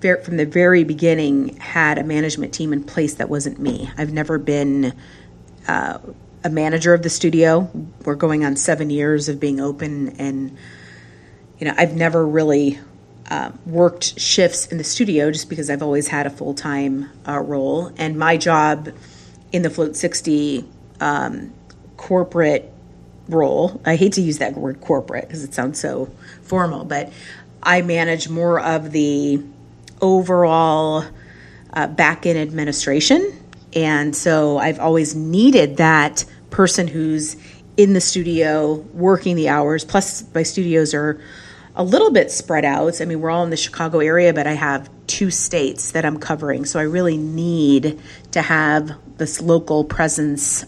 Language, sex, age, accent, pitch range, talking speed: English, female, 40-59, American, 145-170 Hz, 155 wpm